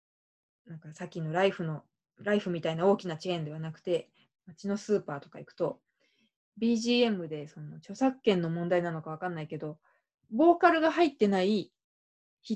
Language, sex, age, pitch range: Japanese, female, 20-39, 160-215 Hz